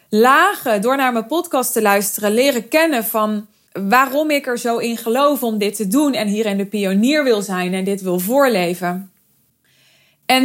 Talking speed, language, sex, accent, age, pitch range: 180 wpm, Dutch, female, Dutch, 20-39, 215-275 Hz